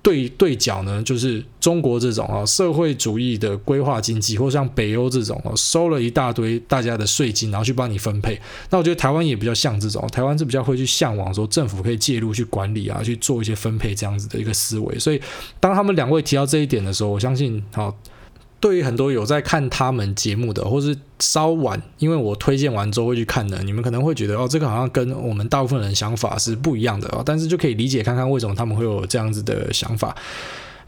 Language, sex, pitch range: Chinese, male, 110-145 Hz